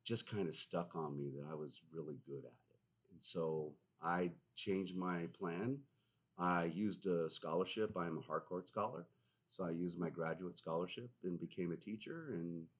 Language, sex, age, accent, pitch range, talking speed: English, male, 40-59, American, 90-125 Hz, 185 wpm